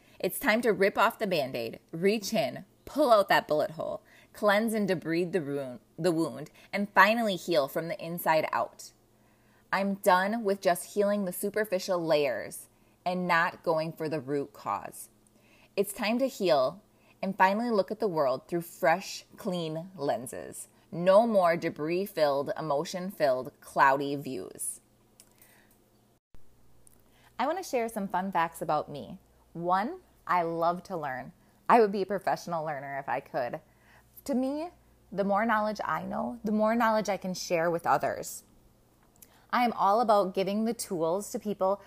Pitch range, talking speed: 160-215 Hz, 155 wpm